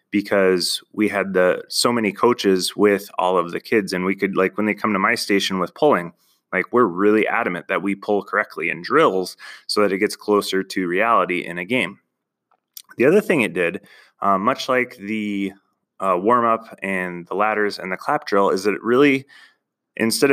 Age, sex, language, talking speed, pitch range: 20-39, male, English, 200 wpm, 95-110 Hz